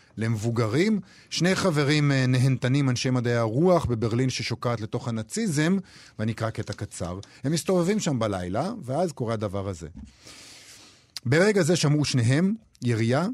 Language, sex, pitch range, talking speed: Hebrew, male, 105-145 Hz, 120 wpm